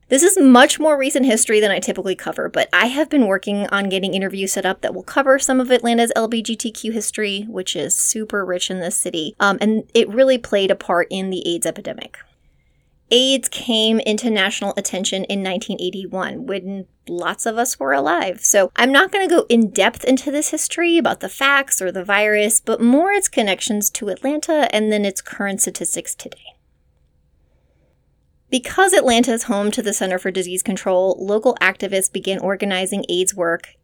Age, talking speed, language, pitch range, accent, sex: 20-39, 185 wpm, English, 185-235 Hz, American, female